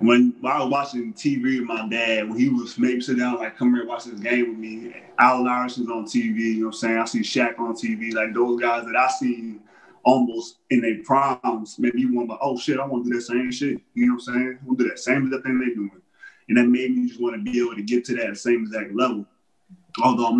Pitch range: 115-130 Hz